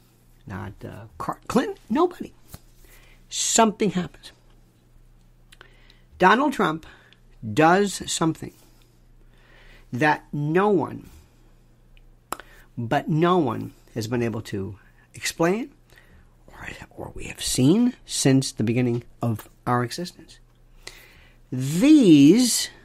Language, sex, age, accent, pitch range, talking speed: English, male, 50-69, American, 105-165 Hz, 90 wpm